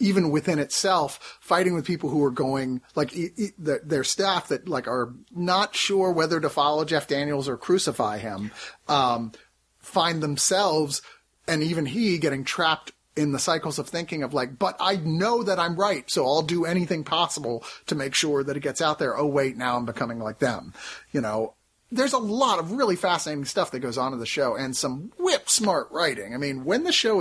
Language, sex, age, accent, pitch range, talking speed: English, male, 30-49, American, 130-175 Hz, 205 wpm